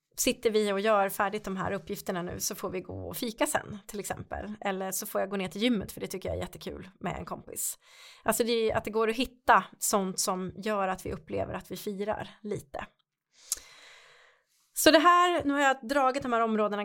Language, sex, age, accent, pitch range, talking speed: Swedish, female, 30-49, native, 185-240 Hz, 215 wpm